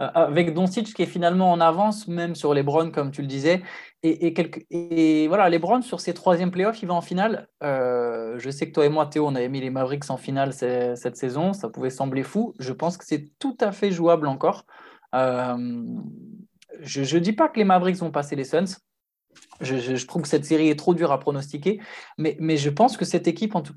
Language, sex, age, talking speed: French, male, 20-39, 230 wpm